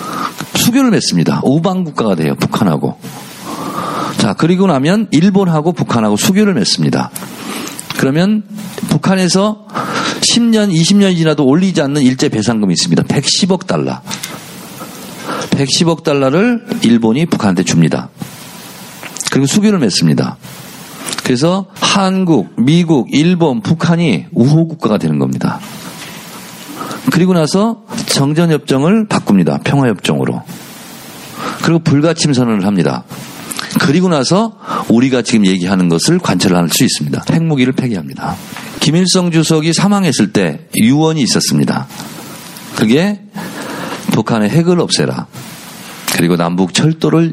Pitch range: 135-200 Hz